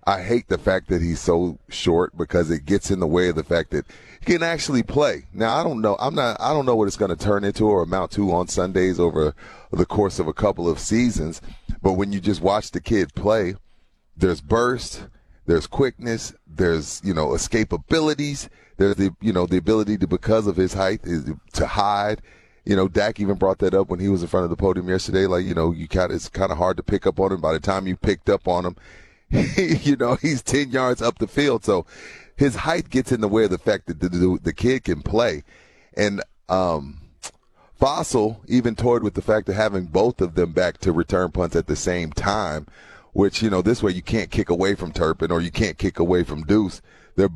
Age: 30-49